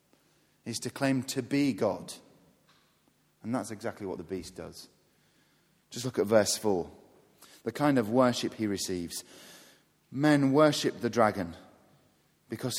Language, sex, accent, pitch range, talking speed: English, male, British, 120-155 Hz, 135 wpm